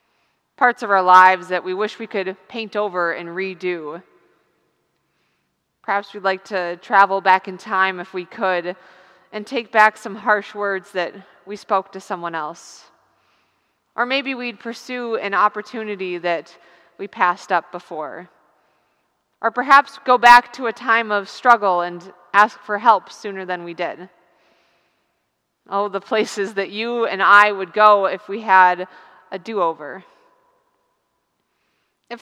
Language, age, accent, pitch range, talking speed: English, 30-49, American, 180-225 Hz, 145 wpm